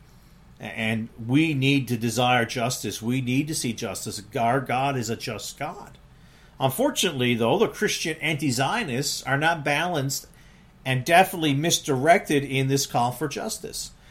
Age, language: 40-59, English